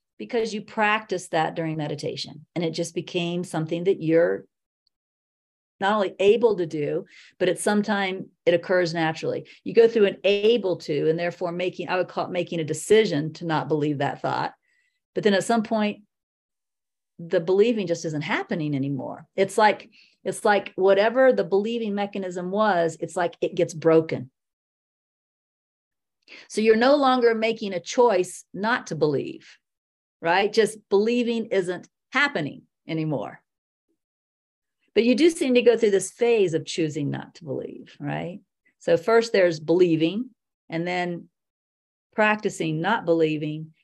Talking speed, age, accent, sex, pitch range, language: 150 wpm, 40-59, American, female, 160-215 Hz, English